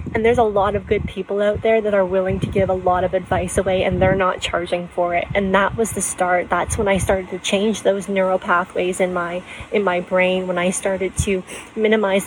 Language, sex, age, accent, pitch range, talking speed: English, female, 20-39, American, 185-220 Hz, 240 wpm